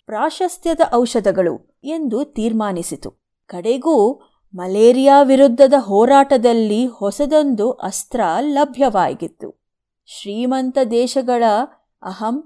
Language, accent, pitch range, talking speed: Kannada, native, 205-265 Hz, 65 wpm